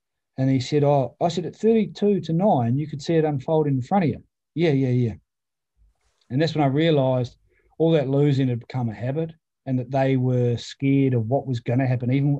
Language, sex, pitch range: English, male, 130-155 Hz